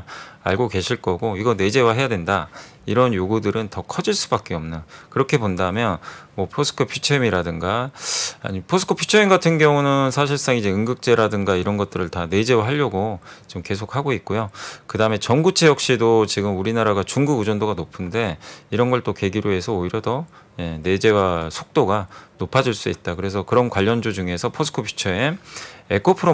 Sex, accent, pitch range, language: male, native, 95-130 Hz, Korean